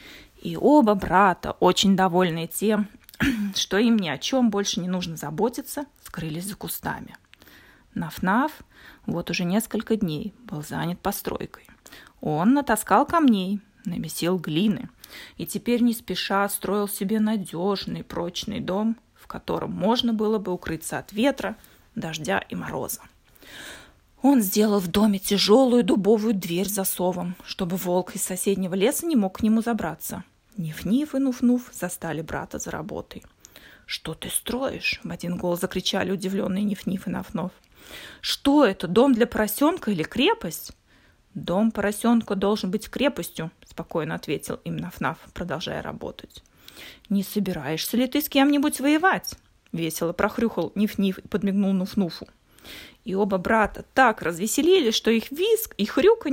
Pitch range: 185-235 Hz